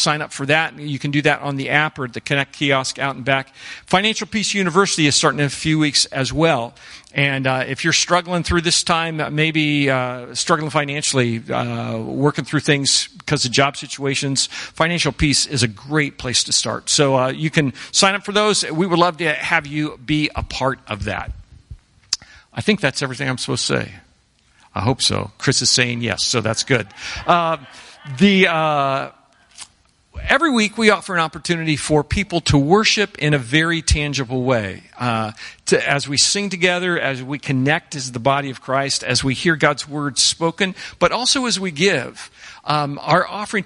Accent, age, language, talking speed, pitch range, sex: American, 50-69, English, 195 wpm, 135-170 Hz, male